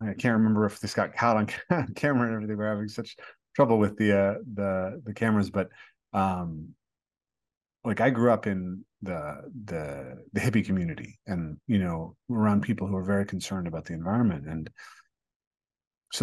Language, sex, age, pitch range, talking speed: English, male, 30-49, 90-110 Hz, 170 wpm